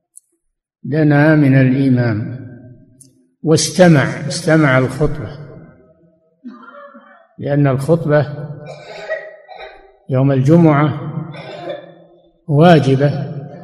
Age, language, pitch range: 60-79, Arabic, 140-165 Hz